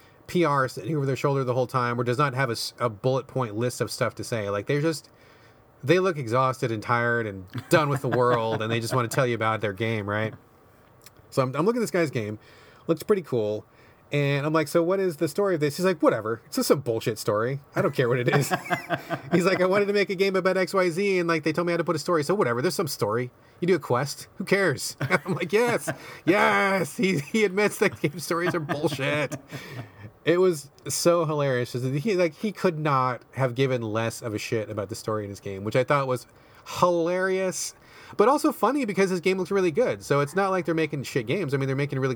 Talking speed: 245 wpm